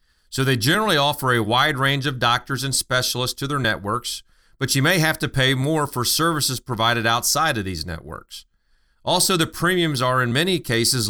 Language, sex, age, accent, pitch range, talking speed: English, male, 40-59, American, 110-145 Hz, 190 wpm